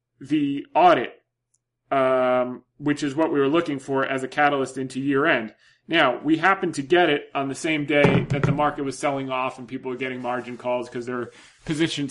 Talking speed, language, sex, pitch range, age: 205 wpm, English, male, 130-170 Hz, 30-49